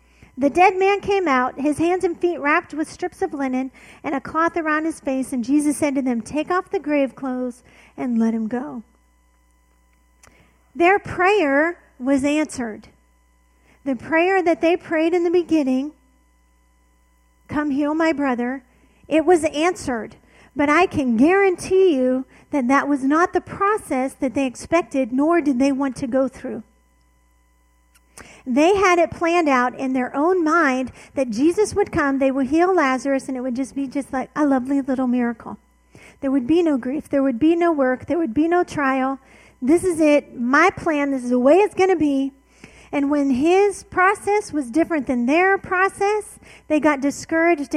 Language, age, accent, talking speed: English, 40-59, American, 180 wpm